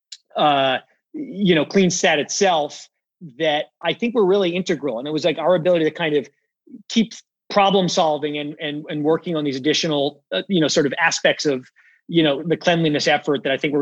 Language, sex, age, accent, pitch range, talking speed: English, male, 30-49, American, 150-170 Hz, 205 wpm